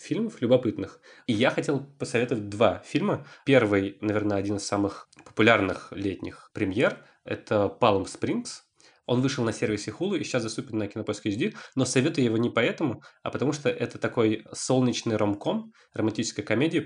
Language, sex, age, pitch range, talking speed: Russian, male, 20-39, 105-120 Hz, 160 wpm